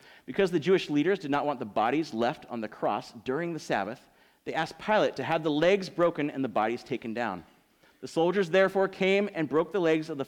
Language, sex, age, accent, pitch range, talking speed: English, male, 30-49, American, 130-190 Hz, 230 wpm